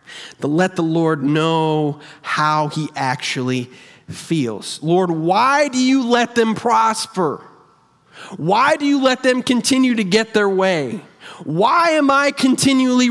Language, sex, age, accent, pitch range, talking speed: English, male, 40-59, American, 140-220 Hz, 135 wpm